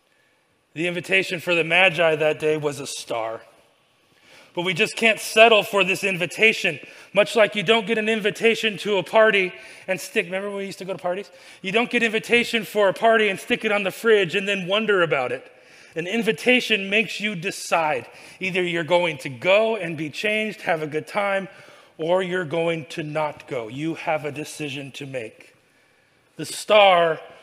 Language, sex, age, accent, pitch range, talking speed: English, male, 30-49, American, 160-205 Hz, 190 wpm